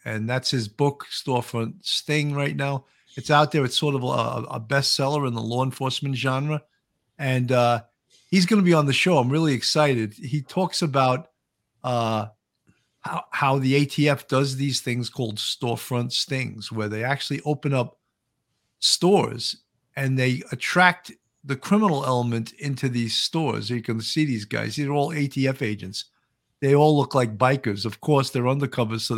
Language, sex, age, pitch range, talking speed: English, male, 50-69, 115-145 Hz, 170 wpm